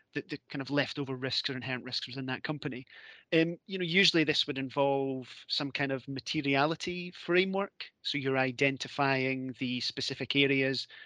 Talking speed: 165 wpm